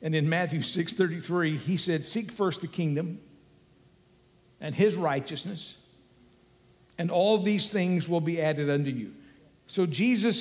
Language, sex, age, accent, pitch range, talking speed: English, male, 50-69, American, 165-225 Hz, 140 wpm